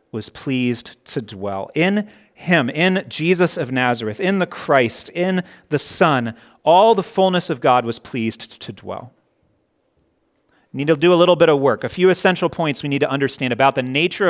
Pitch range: 125-180 Hz